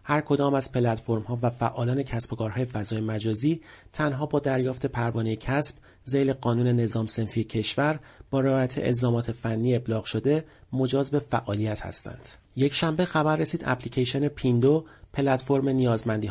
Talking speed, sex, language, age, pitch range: 145 wpm, male, Persian, 40-59, 110-140 Hz